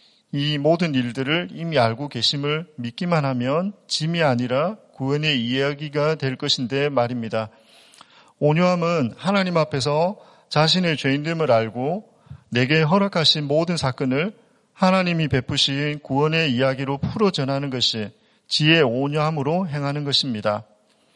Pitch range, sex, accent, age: 130-165 Hz, male, native, 40-59